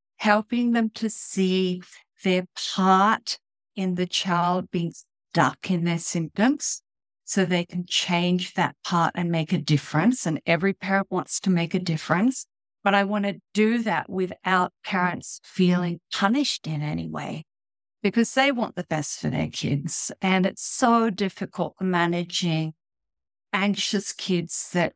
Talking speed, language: 145 wpm, English